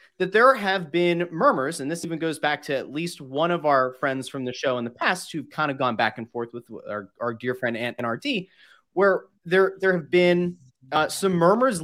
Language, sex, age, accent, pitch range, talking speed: English, male, 30-49, American, 130-180 Hz, 235 wpm